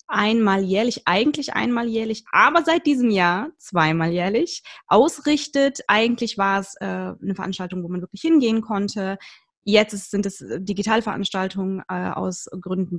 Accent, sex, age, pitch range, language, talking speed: German, female, 20-39, 180-220 Hz, German, 140 wpm